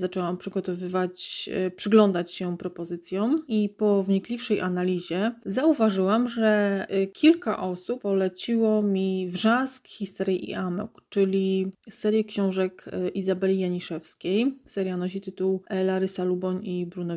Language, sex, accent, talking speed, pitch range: Polish, female, native, 110 wpm, 180-205 Hz